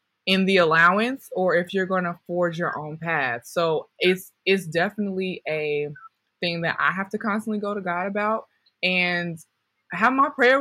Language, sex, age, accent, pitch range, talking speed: English, female, 20-39, American, 170-210 Hz, 175 wpm